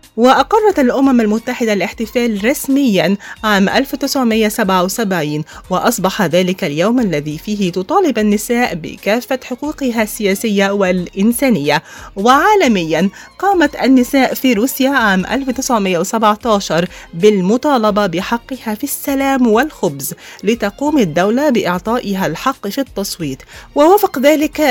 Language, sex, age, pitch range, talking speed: Arabic, female, 30-49, 200-270 Hz, 90 wpm